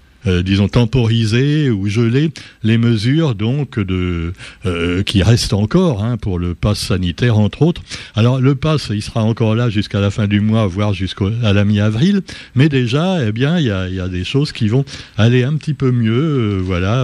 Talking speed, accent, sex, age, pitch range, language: 200 wpm, French, male, 60-79, 105-140 Hz, French